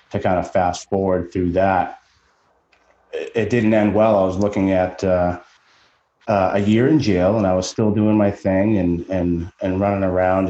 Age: 30-49